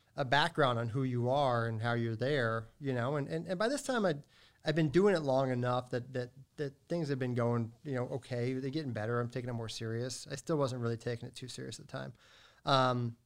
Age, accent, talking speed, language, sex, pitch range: 40-59, American, 250 wpm, English, male, 120-145 Hz